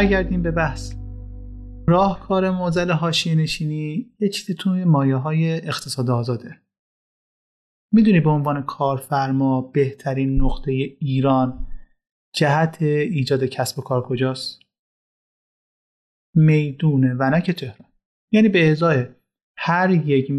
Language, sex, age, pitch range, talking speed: Persian, male, 30-49, 135-170 Hz, 105 wpm